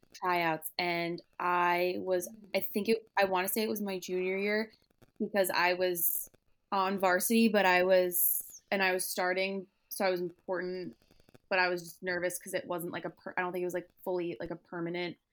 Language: English